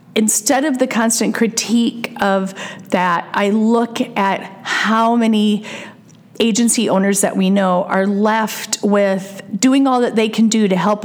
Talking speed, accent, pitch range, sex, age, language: 150 wpm, American, 195-230 Hz, female, 40-59, English